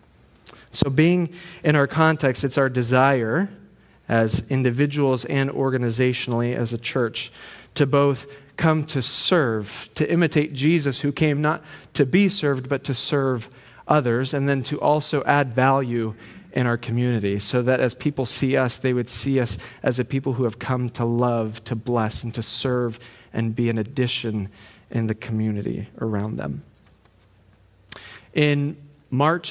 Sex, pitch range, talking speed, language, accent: male, 115-145 Hz, 155 wpm, English, American